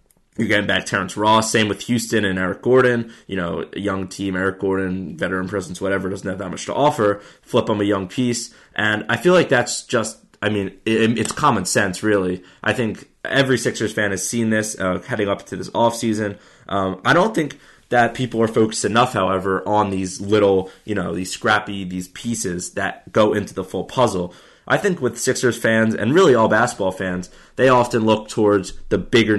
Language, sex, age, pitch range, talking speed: English, male, 20-39, 95-120 Hz, 200 wpm